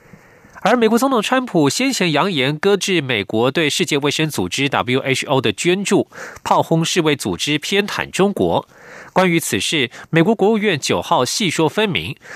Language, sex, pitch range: German, male, 140-190 Hz